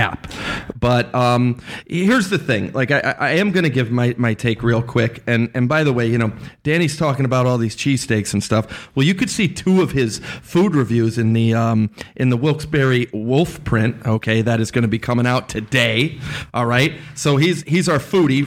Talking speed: 225 wpm